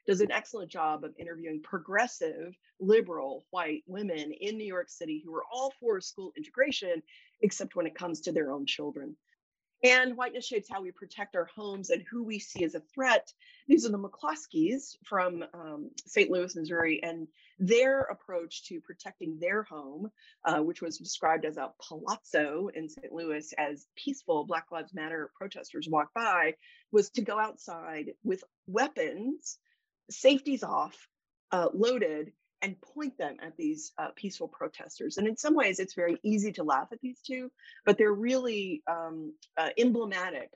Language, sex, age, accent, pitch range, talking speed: English, female, 30-49, American, 165-270 Hz, 165 wpm